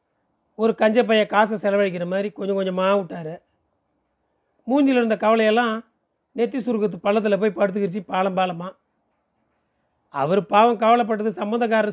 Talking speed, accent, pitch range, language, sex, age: 115 wpm, native, 195-230 Hz, Tamil, male, 40-59